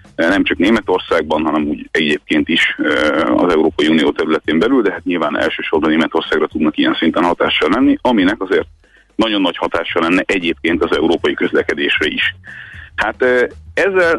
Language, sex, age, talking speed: Hungarian, male, 30-49, 150 wpm